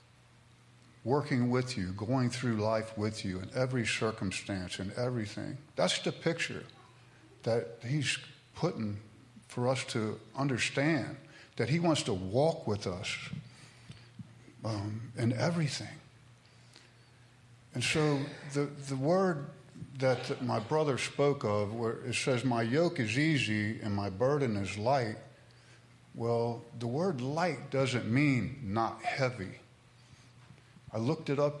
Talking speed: 125 wpm